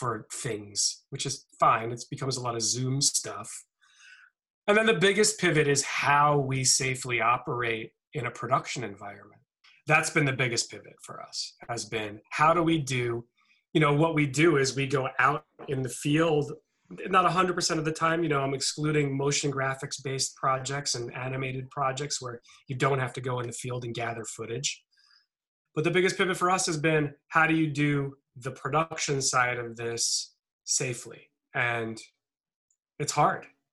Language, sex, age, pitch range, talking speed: English, male, 30-49, 120-150 Hz, 180 wpm